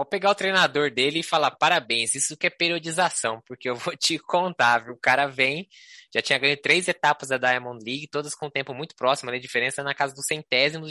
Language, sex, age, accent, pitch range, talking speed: Portuguese, male, 20-39, Brazilian, 125-170 Hz, 235 wpm